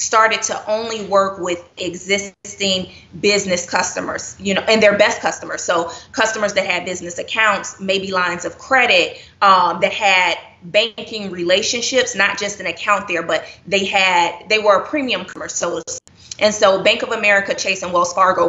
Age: 20-39